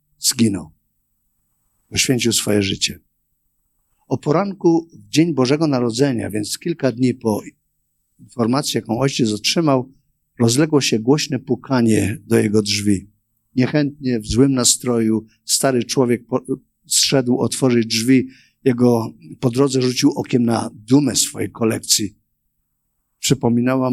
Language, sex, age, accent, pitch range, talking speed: Polish, male, 50-69, native, 110-140 Hz, 115 wpm